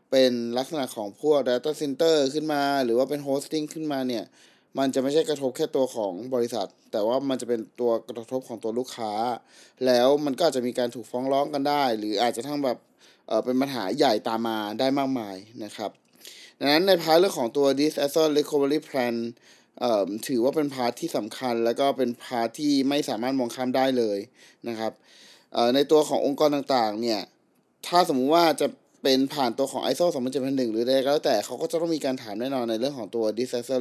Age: 20-39